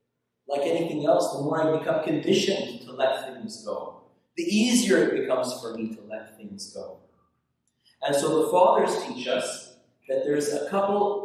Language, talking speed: English, 170 wpm